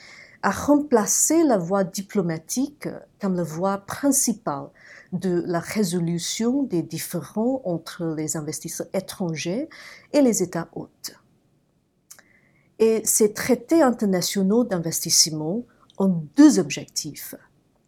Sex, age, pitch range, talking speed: female, 40-59, 170-240 Hz, 95 wpm